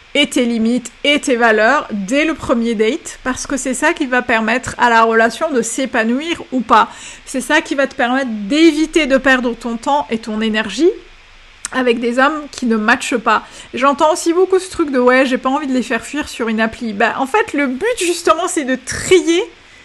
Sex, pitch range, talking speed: female, 235-295 Hz, 215 wpm